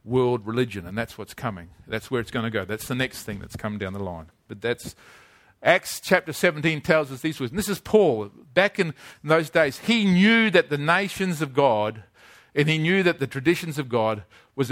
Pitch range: 130-195 Hz